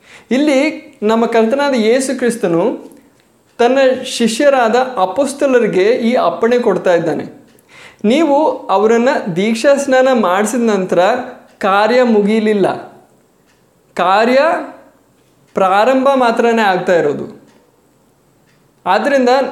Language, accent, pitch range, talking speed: Kannada, native, 200-255 Hz, 80 wpm